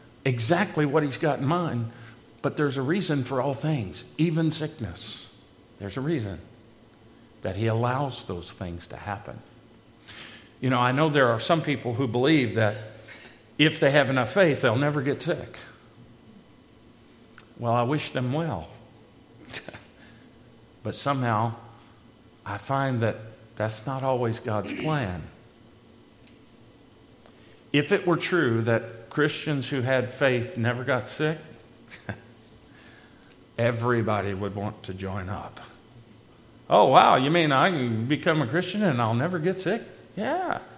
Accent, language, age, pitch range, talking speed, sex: American, English, 50-69, 115-150 Hz, 135 wpm, male